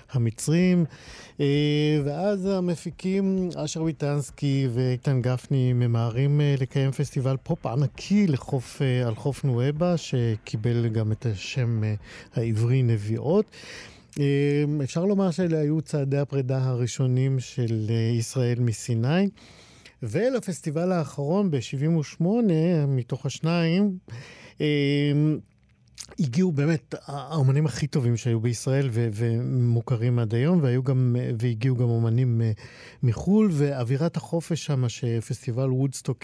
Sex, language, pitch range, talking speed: male, Hebrew, 120-155 Hz, 95 wpm